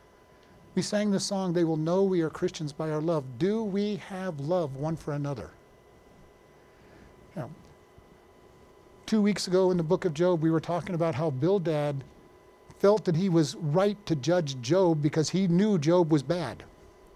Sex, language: male, English